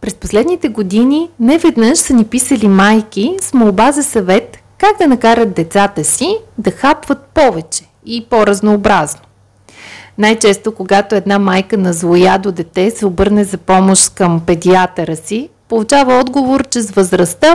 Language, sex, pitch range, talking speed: Bulgarian, female, 185-260 Hz, 140 wpm